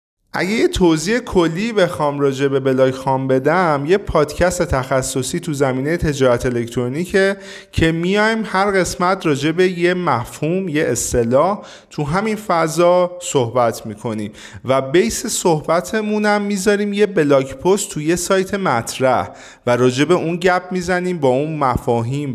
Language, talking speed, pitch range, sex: Persian, 140 wpm, 120-175 Hz, male